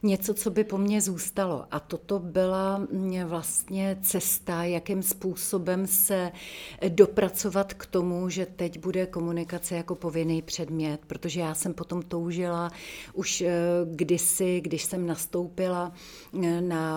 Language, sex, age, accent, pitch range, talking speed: Czech, female, 40-59, native, 160-185 Hz, 125 wpm